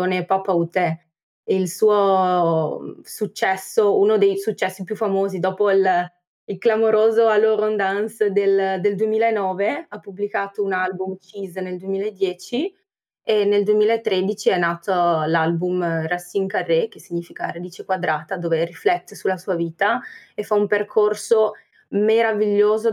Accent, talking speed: native, 125 wpm